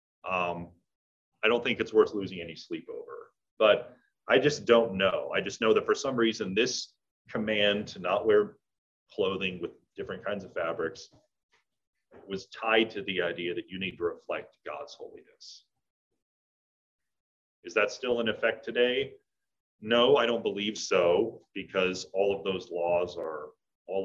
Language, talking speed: English, 155 wpm